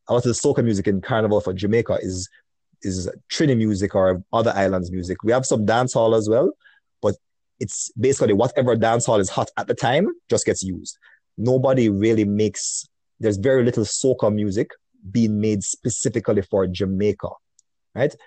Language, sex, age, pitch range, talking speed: English, male, 30-49, 100-125 Hz, 175 wpm